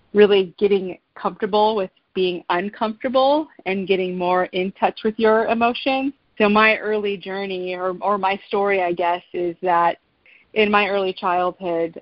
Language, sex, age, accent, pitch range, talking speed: English, female, 30-49, American, 175-205 Hz, 150 wpm